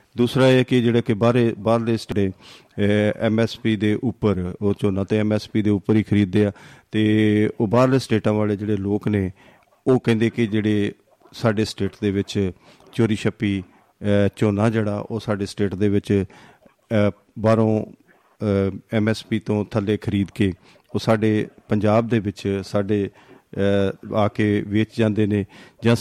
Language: Punjabi